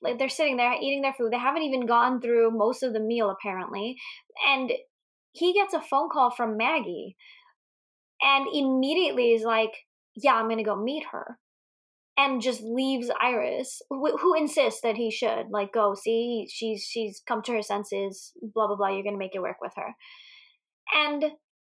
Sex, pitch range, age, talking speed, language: female, 230-335 Hz, 20-39, 185 wpm, English